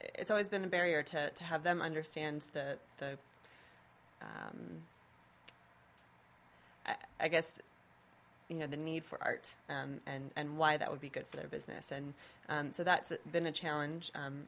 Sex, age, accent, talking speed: female, 20-39, American, 170 wpm